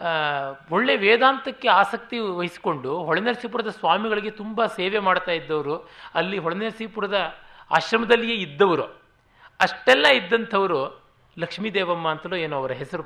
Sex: male